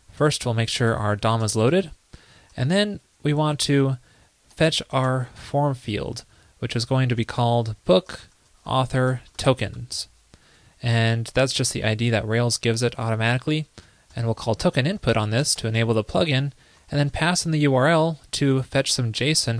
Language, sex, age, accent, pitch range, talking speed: English, male, 20-39, American, 115-145 Hz, 175 wpm